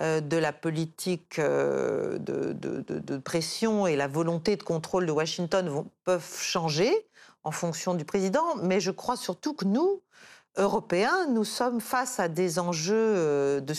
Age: 50-69